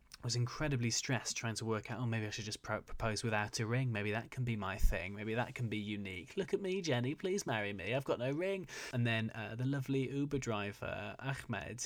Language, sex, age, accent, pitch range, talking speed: English, male, 20-39, British, 110-130 Hz, 245 wpm